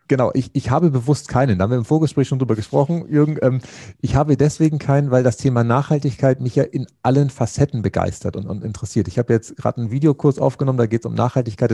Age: 40-59